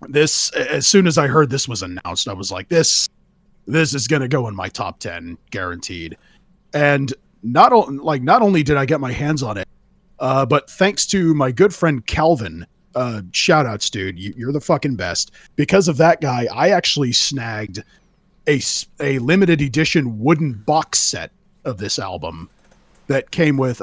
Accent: American